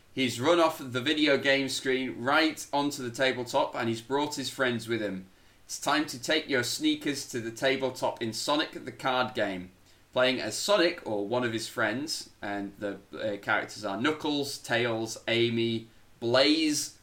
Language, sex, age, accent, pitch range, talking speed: English, male, 20-39, British, 105-130 Hz, 175 wpm